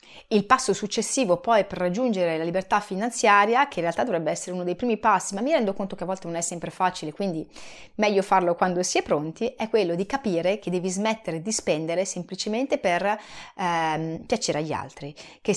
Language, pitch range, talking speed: Italian, 175-220 Hz, 200 wpm